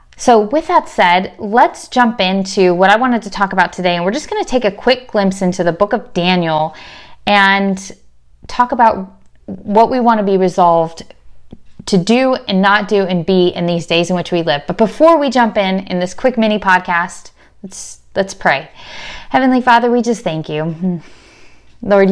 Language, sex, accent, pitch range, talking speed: English, female, American, 170-210 Hz, 195 wpm